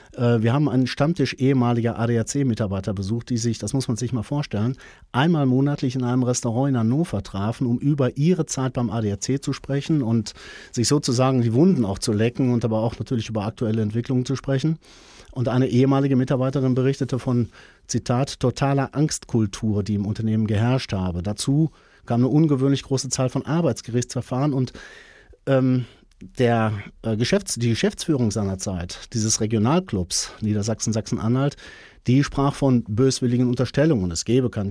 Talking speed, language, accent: 155 wpm, German, German